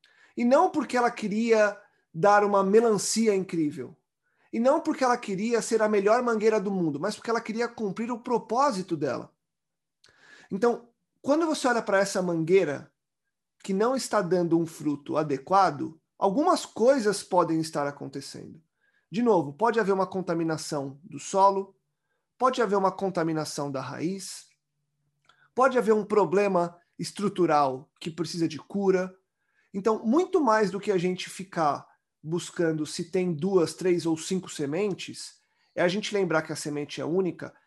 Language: Portuguese